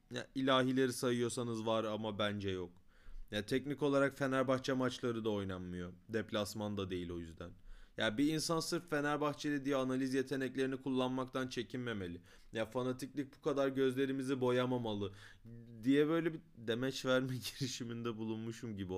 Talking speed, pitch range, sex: 135 wpm, 110-145 Hz, male